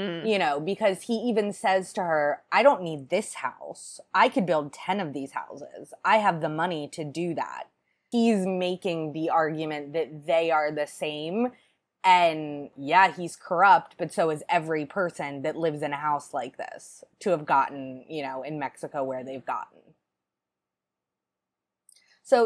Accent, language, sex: American, English, female